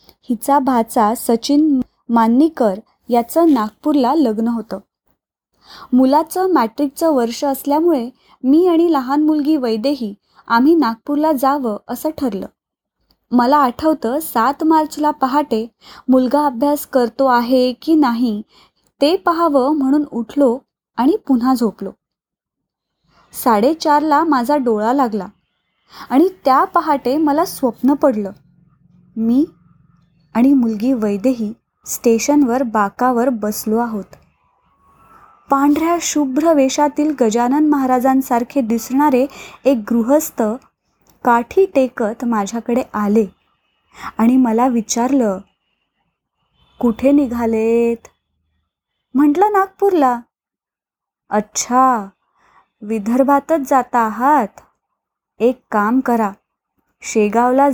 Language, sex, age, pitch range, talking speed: Marathi, female, 20-39, 230-290 Hz, 90 wpm